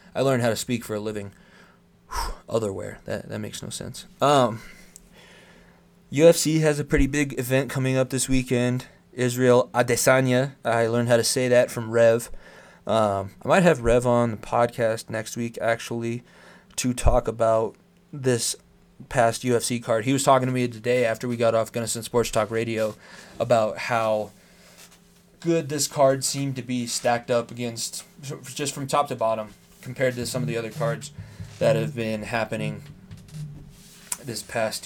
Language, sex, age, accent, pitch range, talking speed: English, male, 20-39, American, 115-135 Hz, 165 wpm